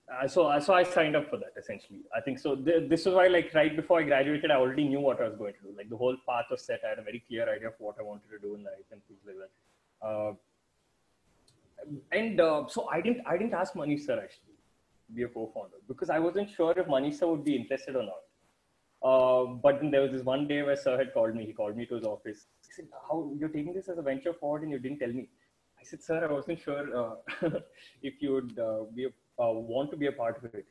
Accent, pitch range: Indian, 125-165 Hz